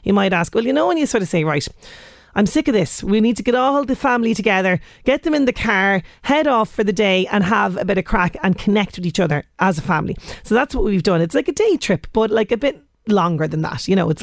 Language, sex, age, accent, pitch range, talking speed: English, female, 30-49, Irish, 180-230 Hz, 285 wpm